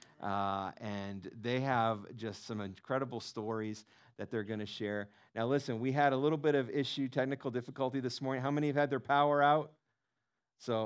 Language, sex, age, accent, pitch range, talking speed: English, male, 40-59, American, 110-135 Hz, 190 wpm